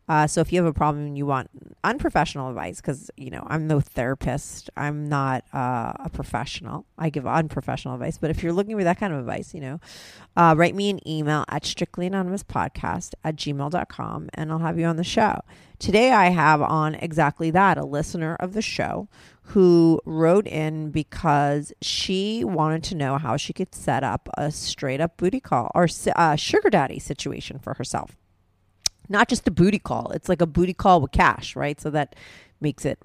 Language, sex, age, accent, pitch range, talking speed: English, female, 30-49, American, 150-195 Hz, 195 wpm